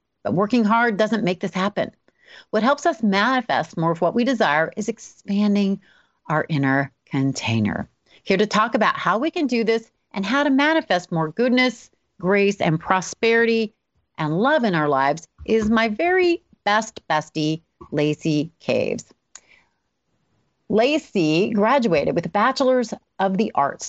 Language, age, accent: English, 40-59, American